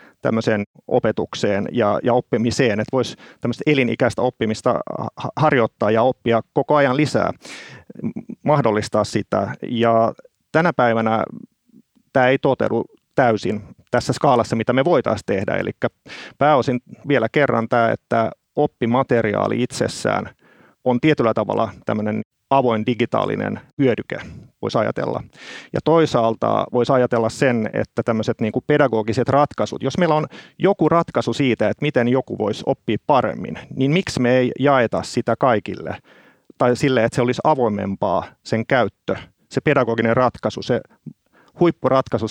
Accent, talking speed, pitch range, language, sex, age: native, 120 wpm, 115-145 Hz, Finnish, male, 30-49